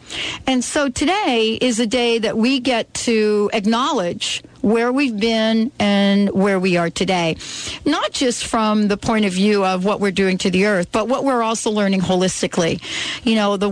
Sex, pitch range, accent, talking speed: female, 190-230 Hz, American, 185 wpm